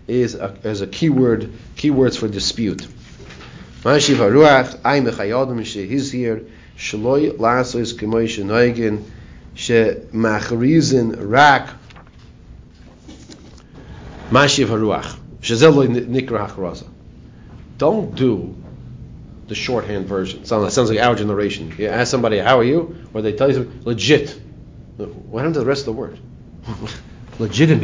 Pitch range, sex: 110-155 Hz, male